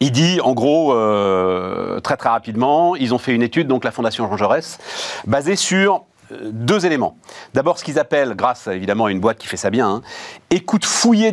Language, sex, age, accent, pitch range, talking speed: French, male, 40-59, French, 130-195 Hz, 195 wpm